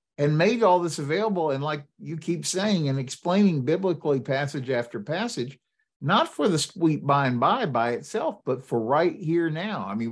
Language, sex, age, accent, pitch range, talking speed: English, male, 50-69, American, 135-175 Hz, 180 wpm